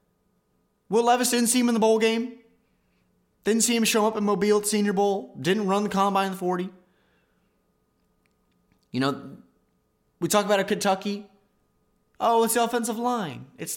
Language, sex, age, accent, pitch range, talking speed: English, male, 20-39, American, 145-220 Hz, 170 wpm